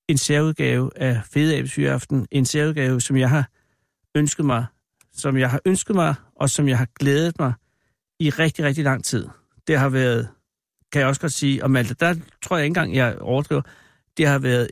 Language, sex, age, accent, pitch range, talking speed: Danish, male, 60-79, native, 130-160 Hz, 190 wpm